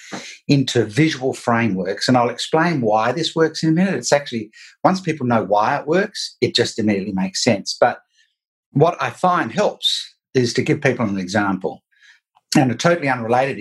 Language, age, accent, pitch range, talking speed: English, 50-69, Australian, 110-145 Hz, 175 wpm